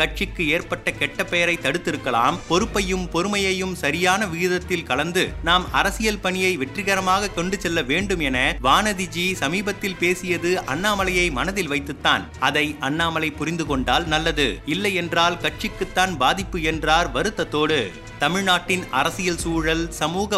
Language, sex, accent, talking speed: Tamil, male, native, 110 wpm